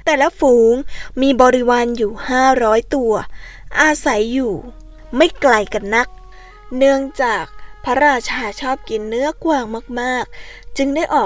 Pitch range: 225-280 Hz